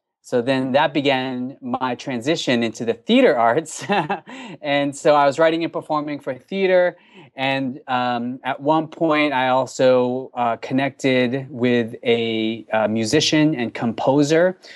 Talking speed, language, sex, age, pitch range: 140 wpm, English, male, 20-39, 115-140 Hz